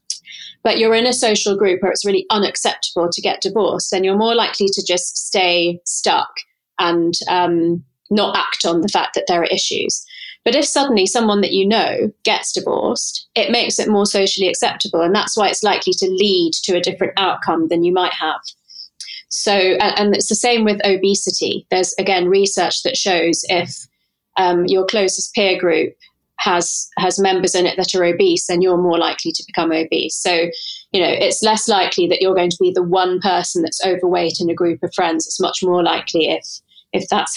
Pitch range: 175-220 Hz